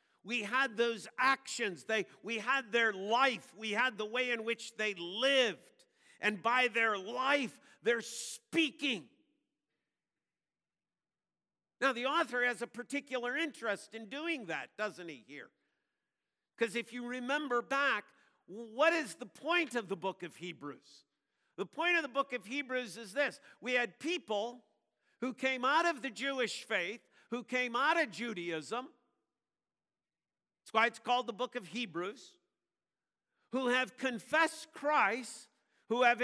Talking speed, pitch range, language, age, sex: 145 wpm, 225-285 Hz, English, 50-69, male